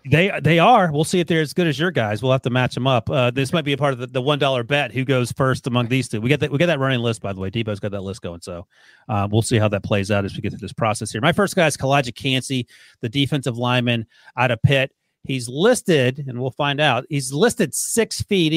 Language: English